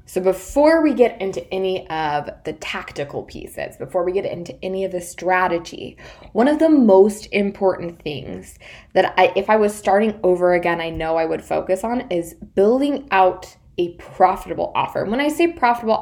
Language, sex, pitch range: English, female, 170-210 Hz